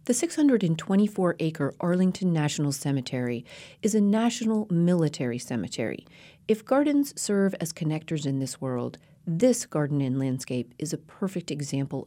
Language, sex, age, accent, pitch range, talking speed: English, female, 40-59, American, 145-185 Hz, 130 wpm